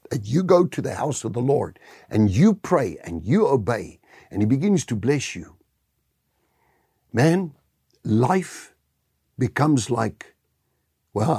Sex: male